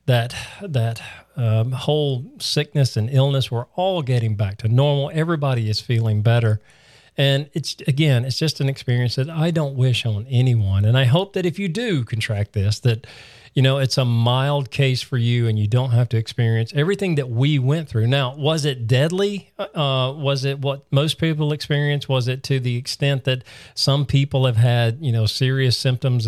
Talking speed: 185 wpm